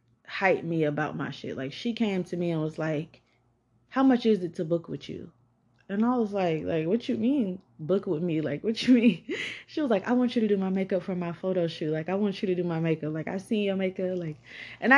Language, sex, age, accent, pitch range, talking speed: English, female, 20-39, American, 160-215 Hz, 260 wpm